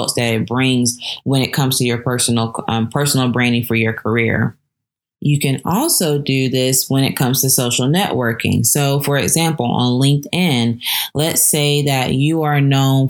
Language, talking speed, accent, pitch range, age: English, 170 wpm, American, 125-145 Hz, 20-39